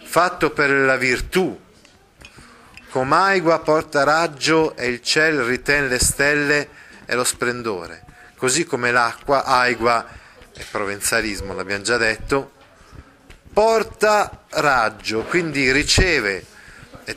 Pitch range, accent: 125-165 Hz, native